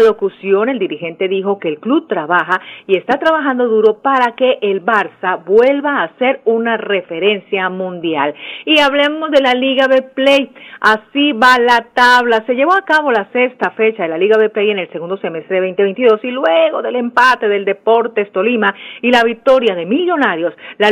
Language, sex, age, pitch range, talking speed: Spanish, female, 40-59, 215-275 Hz, 180 wpm